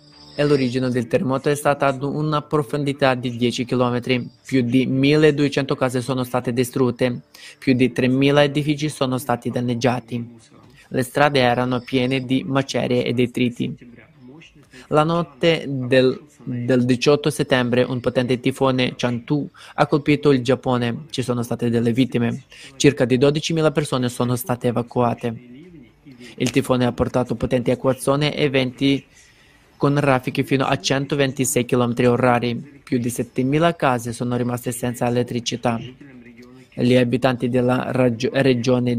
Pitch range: 125-140 Hz